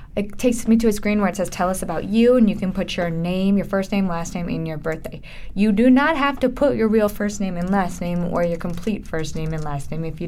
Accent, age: American, 20-39